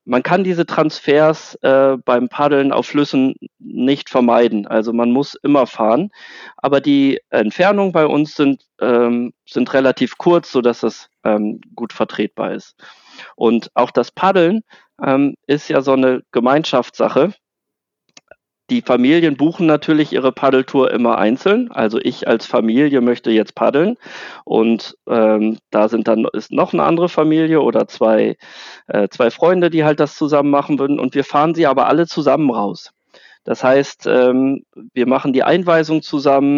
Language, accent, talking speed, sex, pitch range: German, German, 155 wpm, male, 125-155 Hz